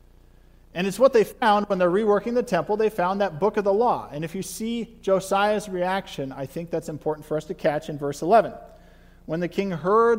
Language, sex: English, male